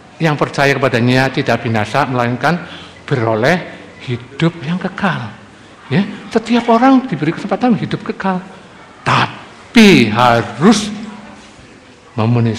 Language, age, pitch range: Malay, 50-69, 145-240 Hz